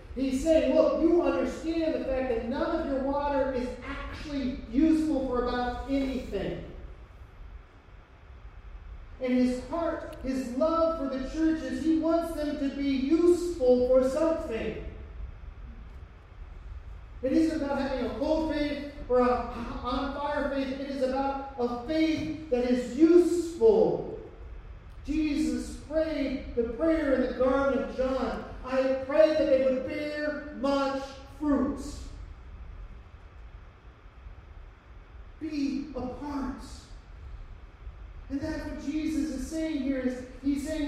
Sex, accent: male, American